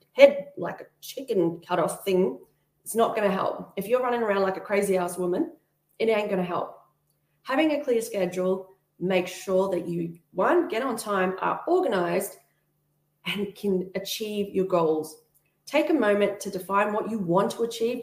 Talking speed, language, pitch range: 185 wpm, English, 175-220 Hz